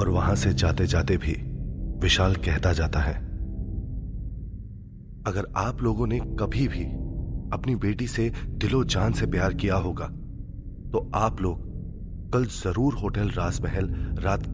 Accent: native